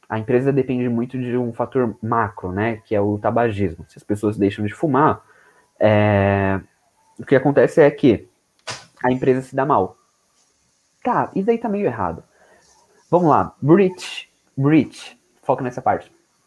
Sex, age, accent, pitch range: male, 20-39, Brazilian, 105-135 Hz